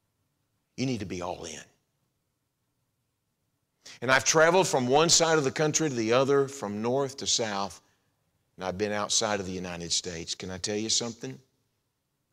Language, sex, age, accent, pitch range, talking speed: English, male, 50-69, American, 100-140 Hz, 170 wpm